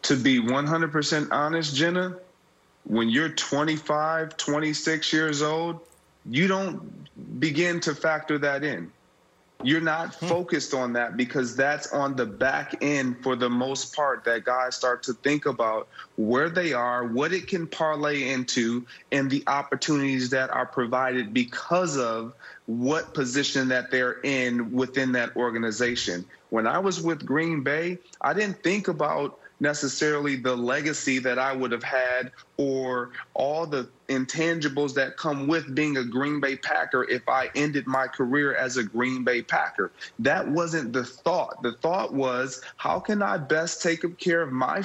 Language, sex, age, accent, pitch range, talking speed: English, male, 30-49, American, 130-165 Hz, 160 wpm